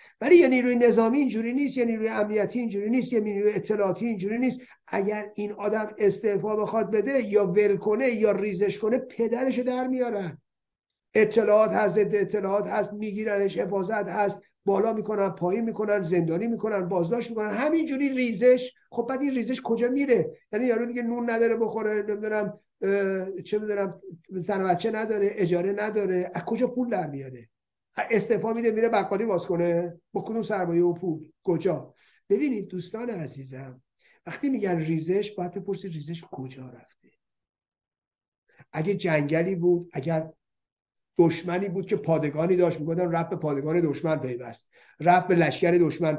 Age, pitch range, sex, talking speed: 50-69, 175-225 Hz, male, 145 wpm